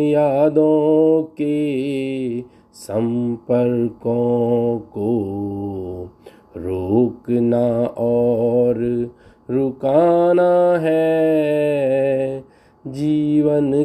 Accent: native